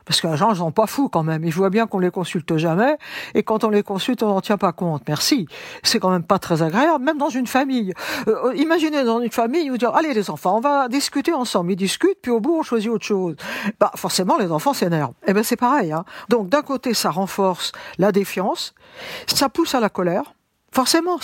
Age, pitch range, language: 60-79, 195-265 Hz, French